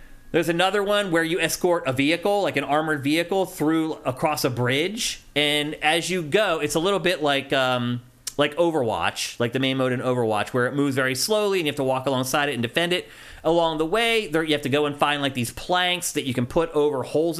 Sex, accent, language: male, American, English